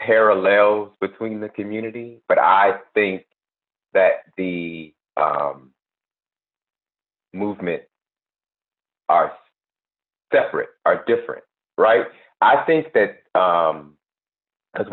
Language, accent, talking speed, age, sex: English, American, 85 wpm, 40-59, male